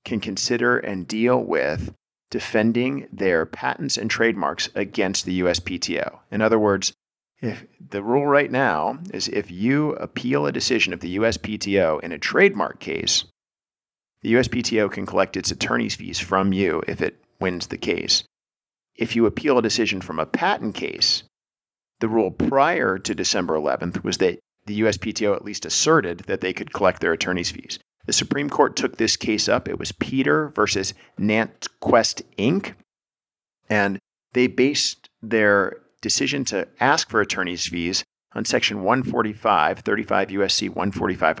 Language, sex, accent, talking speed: English, male, American, 155 wpm